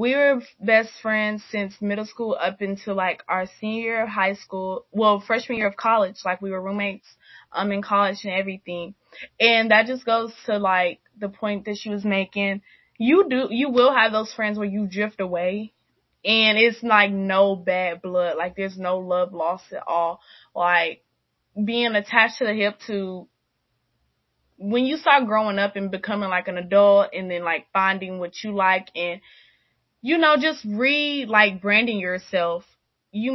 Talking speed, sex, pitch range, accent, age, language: 180 wpm, female, 180-215 Hz, American, 20-39, English